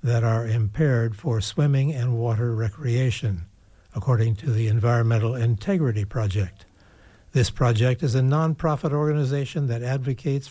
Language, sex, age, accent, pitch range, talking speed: English, male, 60-79, American, 115-150 Hz, 125 wpm